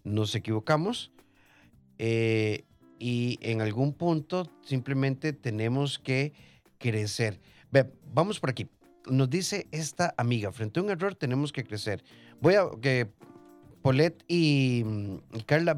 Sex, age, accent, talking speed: male, 30-49, Mexican, 125 wpm